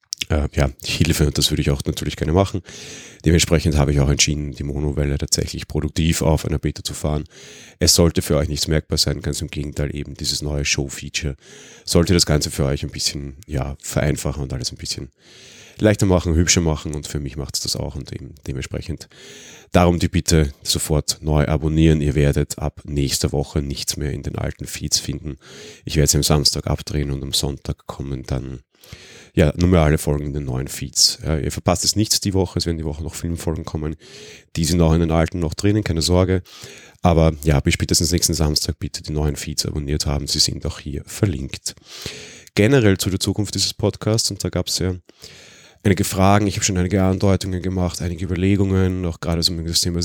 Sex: male